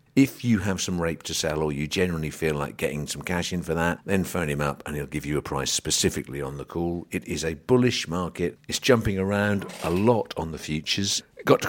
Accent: British